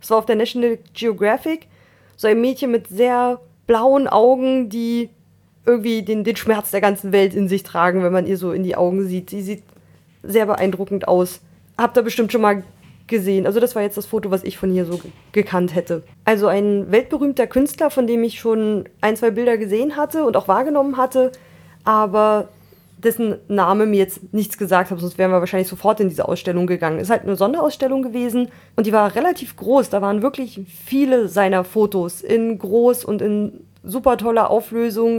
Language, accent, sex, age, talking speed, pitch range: German, German, female, 20-39, 195 wpm, 195-235 Hz